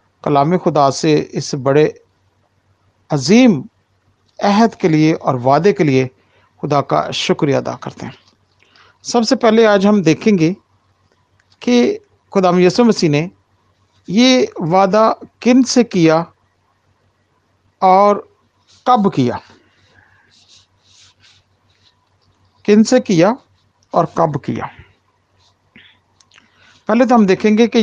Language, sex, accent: Hindi, male, native